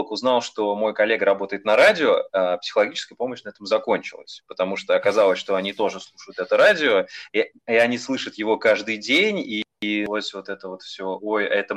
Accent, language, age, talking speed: native, Russian, 20-39, 185 wpm